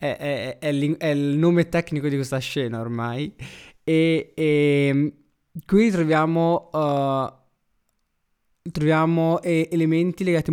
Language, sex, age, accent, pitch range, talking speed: Italian, male, 20-39, native, 125-155 Hz, 125 wpm